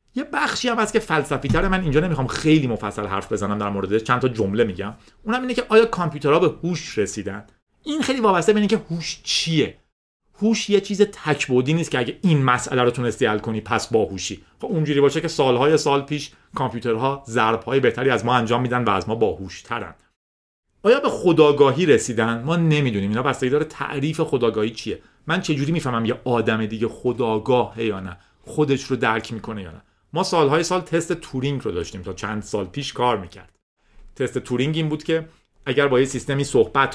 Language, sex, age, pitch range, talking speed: Persian, male, 40-59, 105-150 Hz, 185 wpm